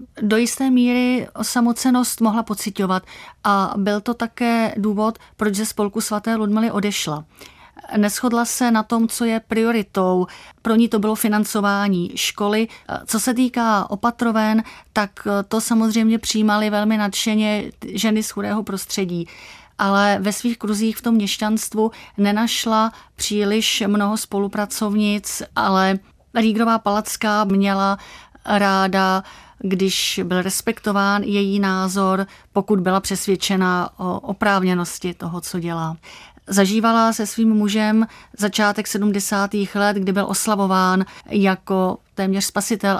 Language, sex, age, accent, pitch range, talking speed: Czech, female, 30-49, native, 190-215 Hz, 120 wpm